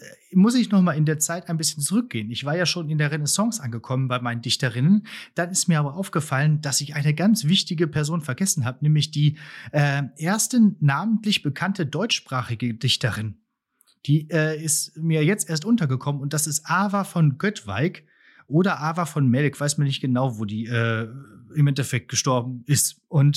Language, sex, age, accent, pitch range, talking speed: German, male, 30-49, German, 140-180 Hz, 180 wpm